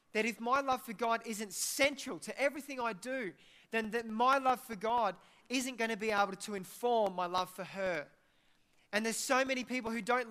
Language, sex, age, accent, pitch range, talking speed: English, male, 20-39, Australian, 185-230 Hz, 205 wpm